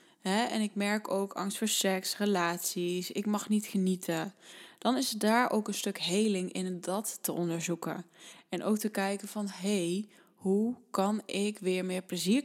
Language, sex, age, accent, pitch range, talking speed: Dutch, female, 20-39, Dutch, 190-230 Hz, 180 wpm